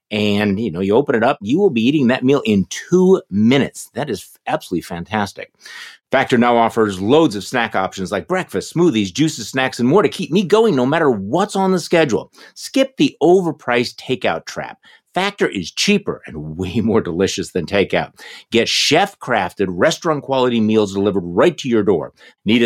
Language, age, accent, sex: English, 50-69, American, male